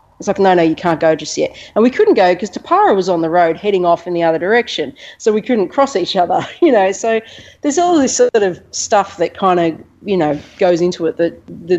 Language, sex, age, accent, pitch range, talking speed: English, female, 40-59, Australian, 155-190 Hz, 255 wpm